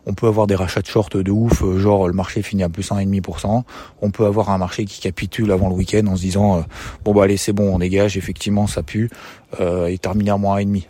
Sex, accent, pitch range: male, French, 95-110 Hz